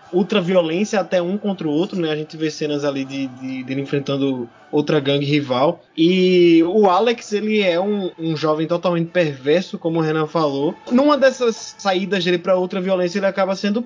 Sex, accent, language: male, Brazilian, Portuguese